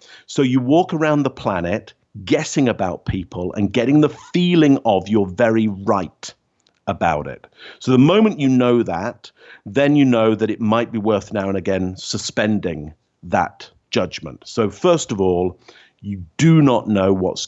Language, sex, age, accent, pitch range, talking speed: English, male, 50-69, British, 95-130 Hz, 165 wpm